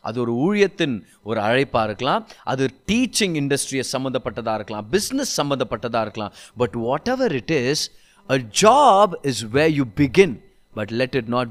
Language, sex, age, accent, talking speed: Tamil, male, 30-49, native, 150 wpm